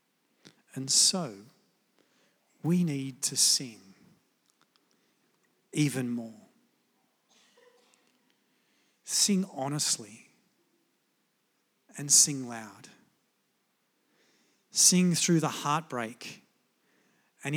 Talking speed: 60 wpm